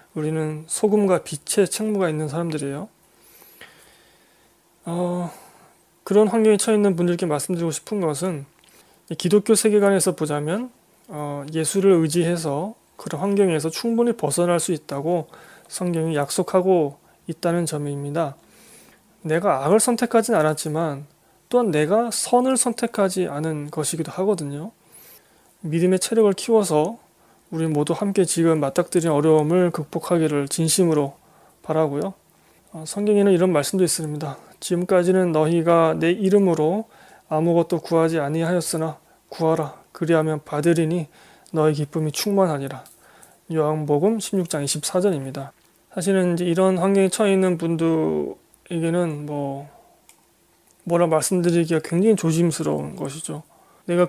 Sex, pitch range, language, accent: male, 155-190 Hz, Korean, native